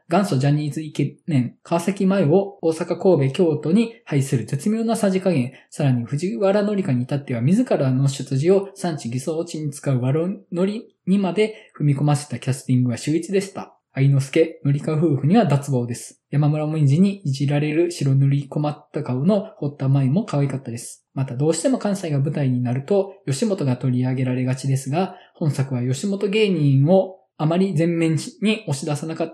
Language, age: Japanese, 20-39